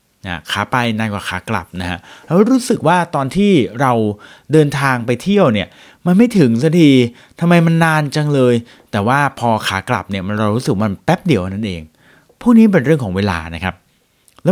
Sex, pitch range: male, 95-155 Hz